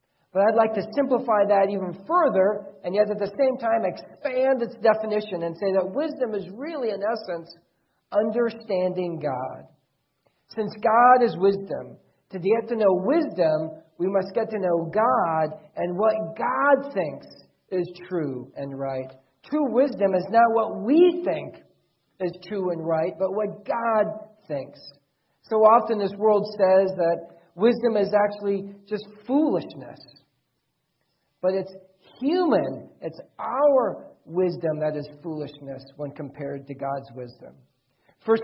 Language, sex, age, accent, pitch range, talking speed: English, male, 40-59, American, 165-220 Hz, 140 wpm